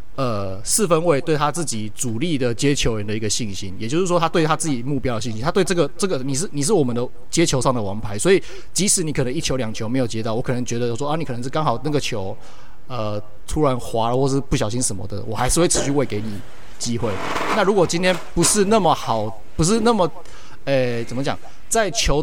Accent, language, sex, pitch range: native, Chinese, male, 115-155 Hz